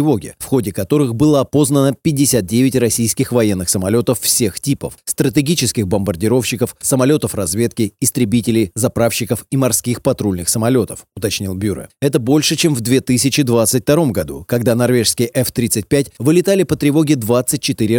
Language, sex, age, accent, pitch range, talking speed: Russian, male, 30-49, native, 110-140 Hz, 120 wpm